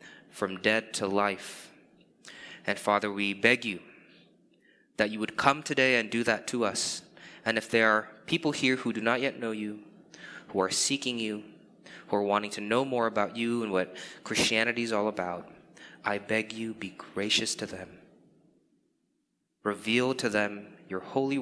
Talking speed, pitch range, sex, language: 170 wpm, 105-135 Hz, male, English